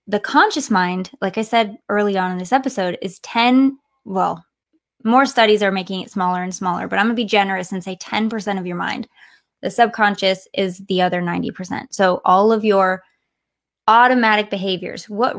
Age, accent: 20-39, American